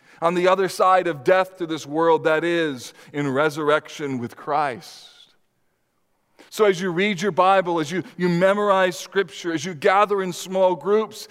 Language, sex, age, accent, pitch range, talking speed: English, male, 40-59, American, 155-215 Hz, 170 wpm